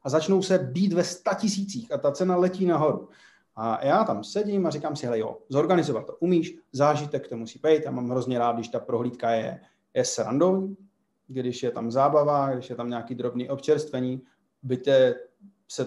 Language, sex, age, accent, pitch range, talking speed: Czech, male, 30-49, native, 120-155 Hz, 185 wpm